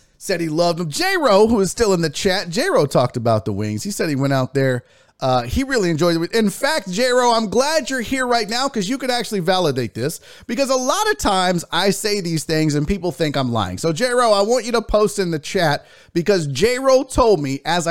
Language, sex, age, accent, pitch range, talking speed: English, male, 30-49, American, 155-235 Hz, 240 wpm